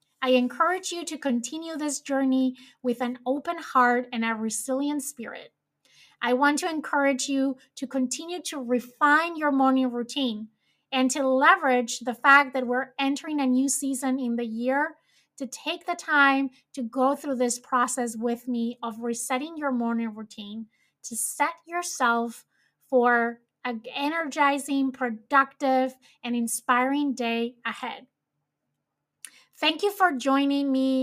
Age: 20-39